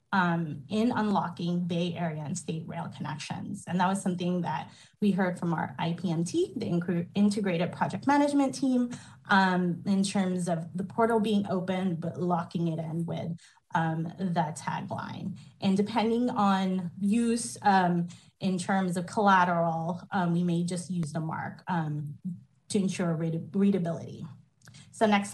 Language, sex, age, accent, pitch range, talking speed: English, female, 30-49, American, 175-210 Hz, 150 wpm